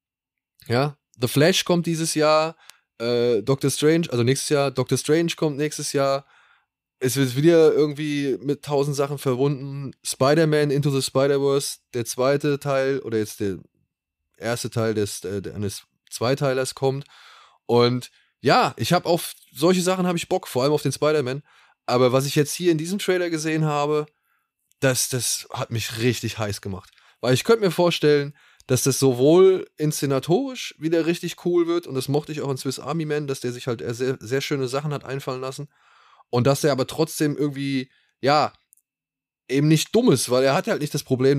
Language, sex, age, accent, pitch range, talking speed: German, male, 20-39, German, 130-155 Hz, 180 wpm